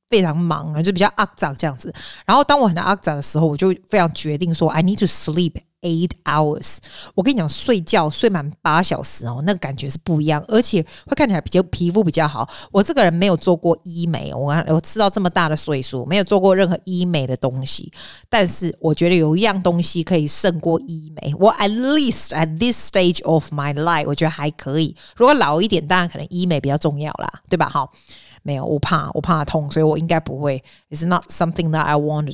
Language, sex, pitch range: Chinese, female, 155-195 Hz